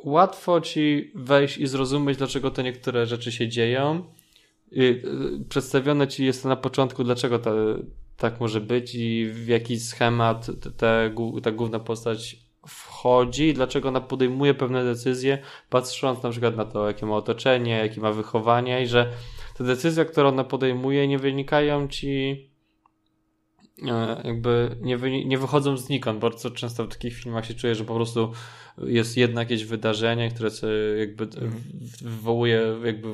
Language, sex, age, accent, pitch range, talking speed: Polish, male, 20-39, native, 115-135 Hz, 150 wpm